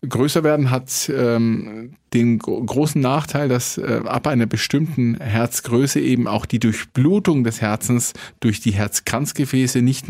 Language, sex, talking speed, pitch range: German, male, 135 wpm, 110-130 Hz